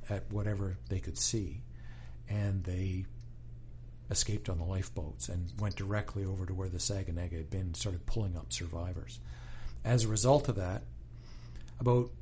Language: English